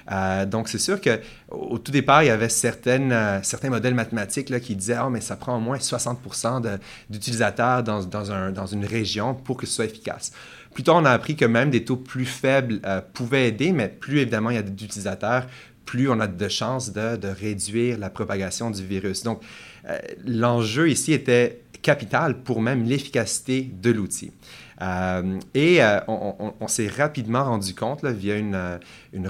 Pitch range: 100-125 Hz